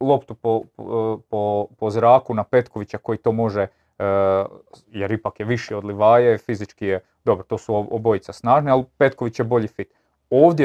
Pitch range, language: 110-130 Hz, Croatian